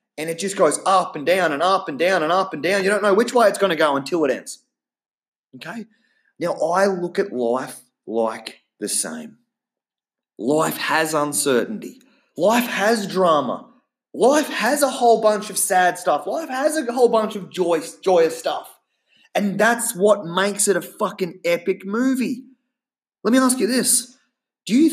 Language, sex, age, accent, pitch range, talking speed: English, male, 30-49, Australian, 150-220 Hz, 180 wpm